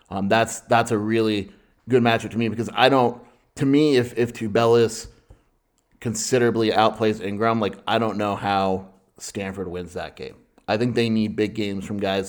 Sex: male